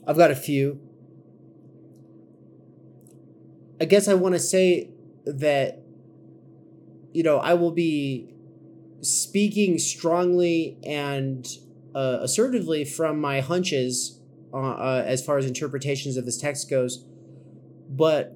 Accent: American